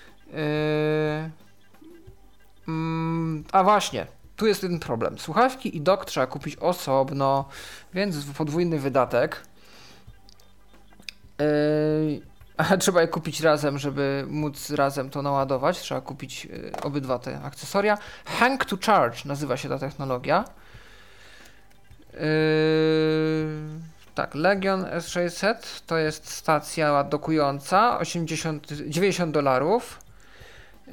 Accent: native